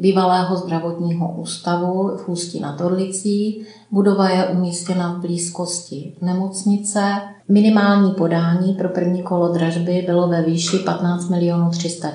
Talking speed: 120 wpm